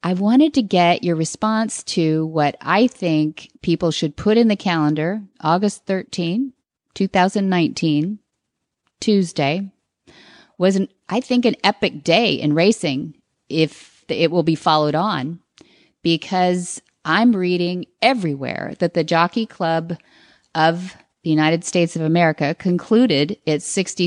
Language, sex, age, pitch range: English, female, 40-59, 155-195 Hz